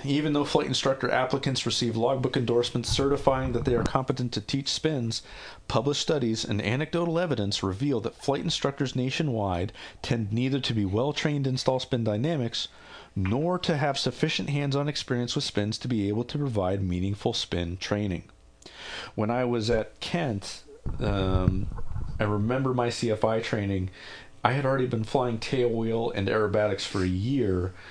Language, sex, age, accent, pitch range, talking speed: English, male, 40-59, American, 100-135 Hz, 160 wpm